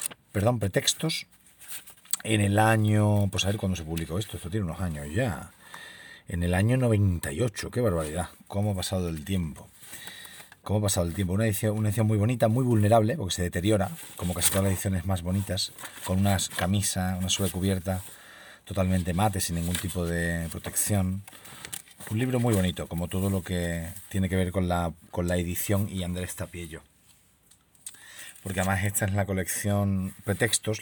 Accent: Spanish